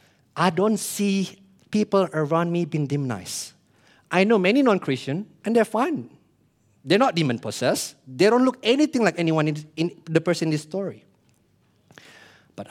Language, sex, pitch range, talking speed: English, male, 135-185 Hz, 145 wpm